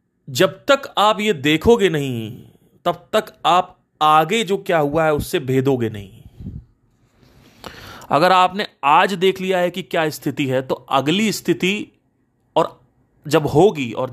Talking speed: 145 wpm